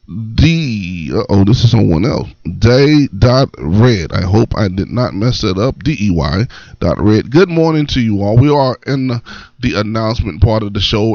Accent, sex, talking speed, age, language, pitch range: American, male, 195 wpm, 20-39, English, 95-120 Hz